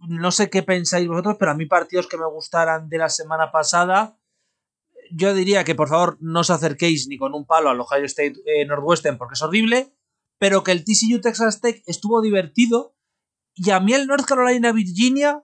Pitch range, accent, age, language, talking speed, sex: 160-230 Hz, Spanish, 30-49, Spanish, 190 wpm, male